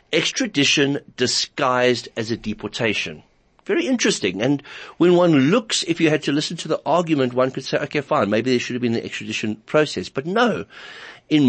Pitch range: 110-150 Hz